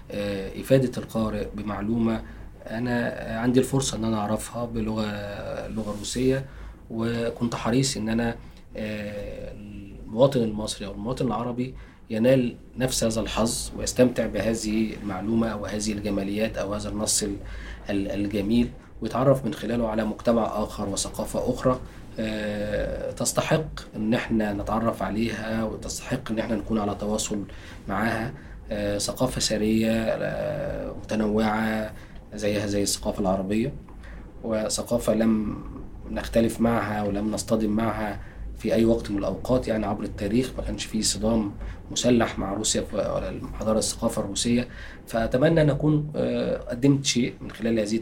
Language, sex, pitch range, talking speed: Arabic, male, 105-115 Hz, 120 wpm